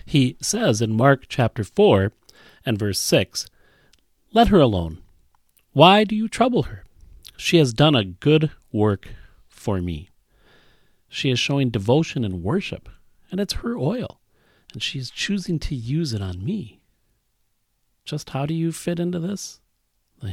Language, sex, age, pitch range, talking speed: English, male, 40-59, 95-150 Hz, 155 wpm